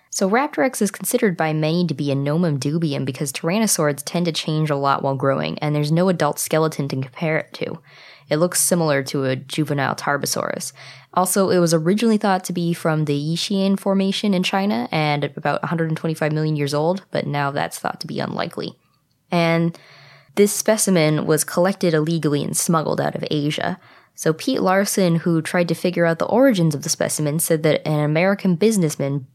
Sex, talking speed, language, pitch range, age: female, 185 wpm, English, 150-185 Hz, 20-39